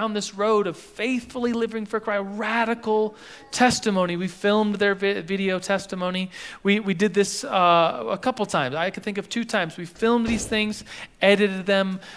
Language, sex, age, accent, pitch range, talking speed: English, male, 30-49, American, 140-195 Hz, 175 wpm